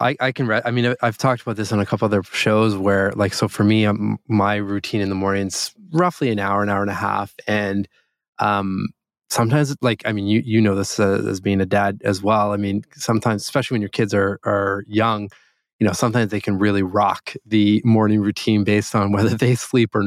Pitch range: 100-115 Hz